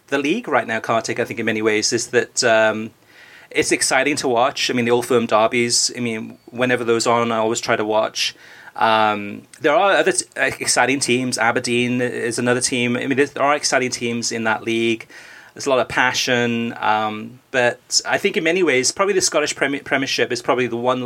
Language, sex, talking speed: English, male, 215 wpm